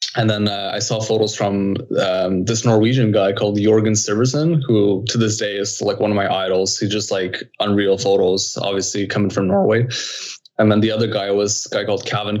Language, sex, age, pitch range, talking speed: English, male, 20-39, 100-115 Hz, 210 wpm